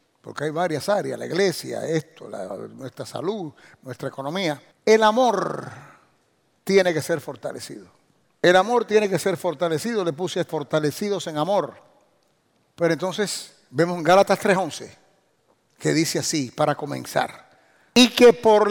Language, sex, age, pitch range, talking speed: English, male, 60-79, 170-220 Hz, 135 wpm